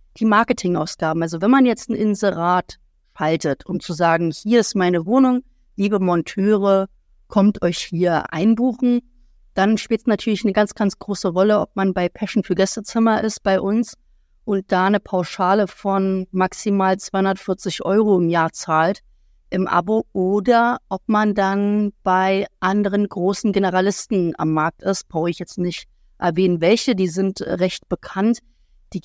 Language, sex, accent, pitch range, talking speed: German, female, German, 180-210 Hz, 155 wpm